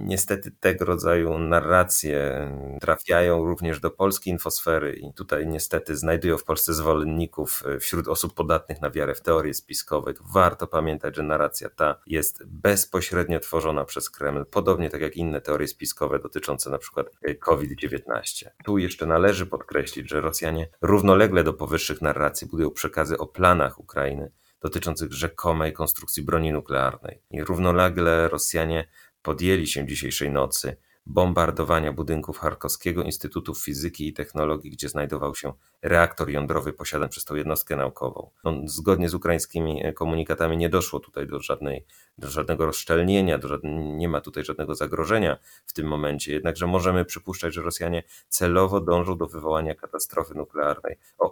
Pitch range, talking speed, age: 75-85 Hz, 145 wpm, 30-49